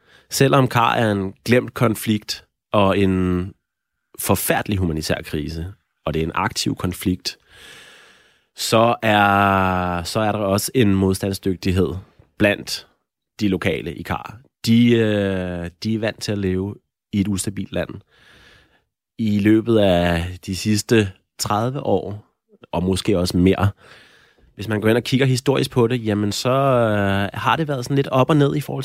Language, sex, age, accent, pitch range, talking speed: Danish, male, 30-49, native, 95-130 Hz, 150 wpm